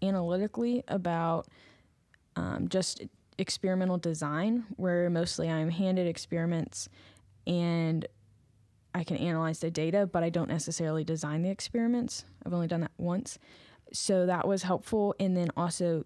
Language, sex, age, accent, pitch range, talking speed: English, female, 10-29, American, 165-195 Hz, 135 wpm